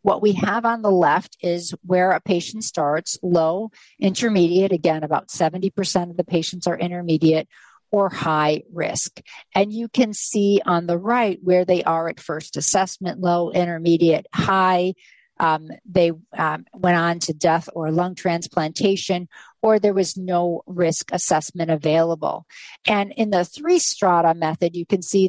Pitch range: 165-200 Hz